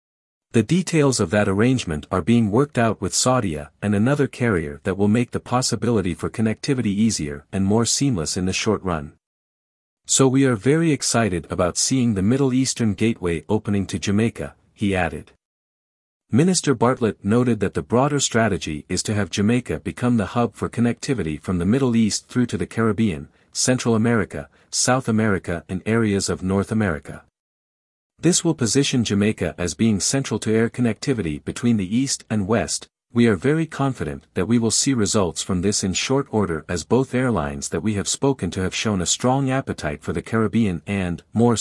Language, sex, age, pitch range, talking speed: English, male, 50-69, 90-120 Hz, 180 wpm